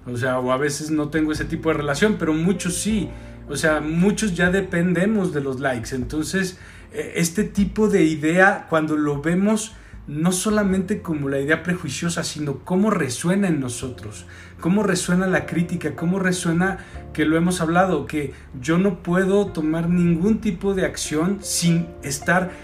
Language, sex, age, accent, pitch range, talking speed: Spanish, male, 40-59, Mexican, 150-185 Hz, 165 wpm